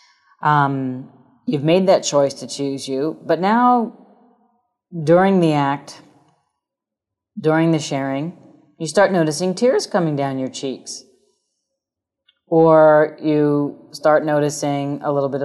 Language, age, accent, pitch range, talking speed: English, 40-59, American, 140-170 Hz, 120 wpm